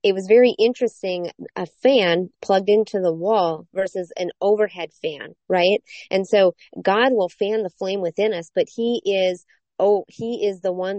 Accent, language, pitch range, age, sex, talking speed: American, English, 185-225 Hz, 30-49, female, 175 wpm